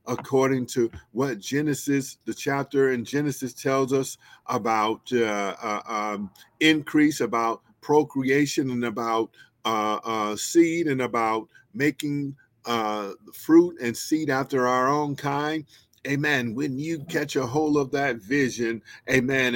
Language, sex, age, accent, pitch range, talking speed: English, male, 50-69, American, 120-140 Hz, 130 wpm